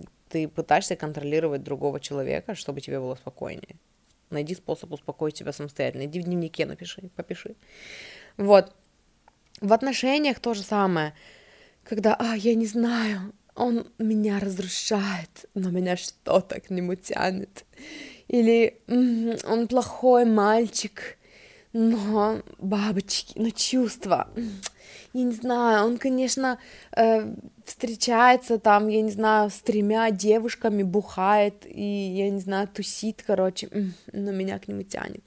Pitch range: 180-225 Hz